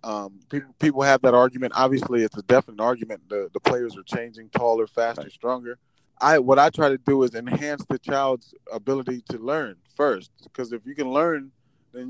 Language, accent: English, American